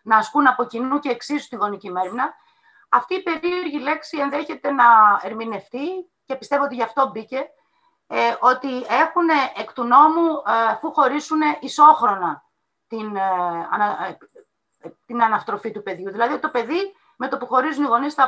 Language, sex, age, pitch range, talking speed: Greek, female, 30-49, 225-305 Hz, 160 wpm